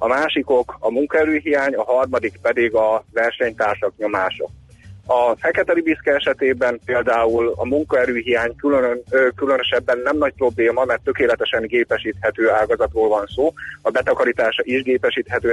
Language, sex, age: Hungarian, male, 30-49